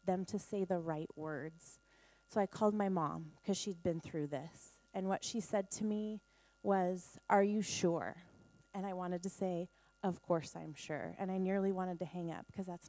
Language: English